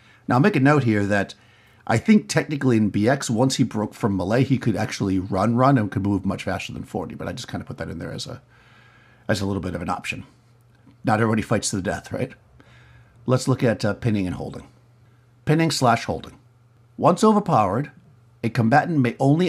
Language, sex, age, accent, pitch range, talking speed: English, male, 50-69, American, 115-130 Hz, 215 wpm